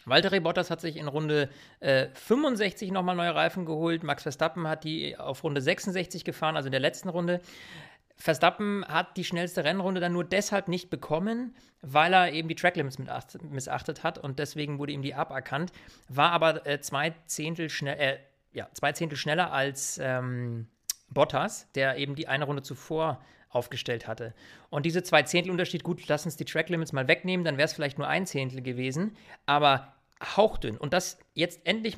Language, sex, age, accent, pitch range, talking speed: German, male, 40-59, German, 140-175 Hz, 170 wpm